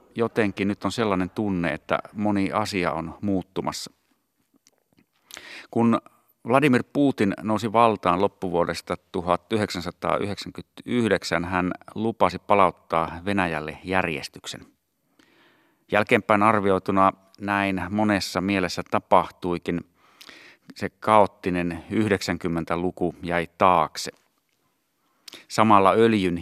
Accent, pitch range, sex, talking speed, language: native, 85-105 Hz, male, 80 wpm, Finnish